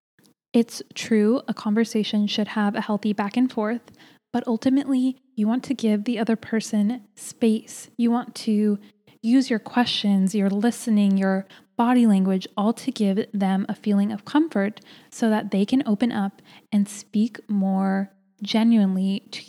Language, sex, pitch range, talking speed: English, female, 200-235 Hz, 155 wpm